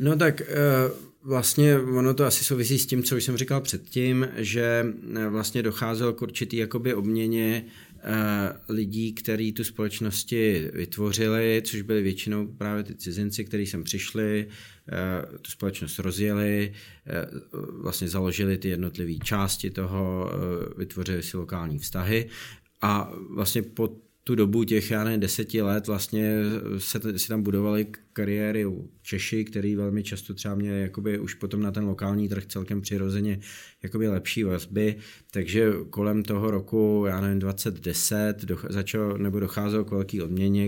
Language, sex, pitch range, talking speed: Czech, male, 95-110 Hz, 140 wpm